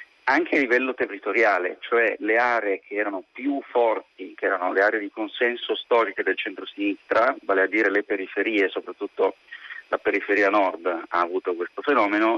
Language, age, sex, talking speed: Italian, 30-49, male, 160 wpm